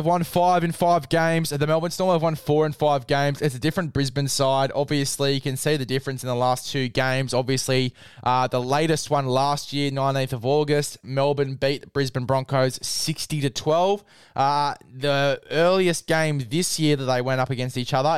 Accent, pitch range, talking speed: Australian, 130-155 Hz, 200 wpm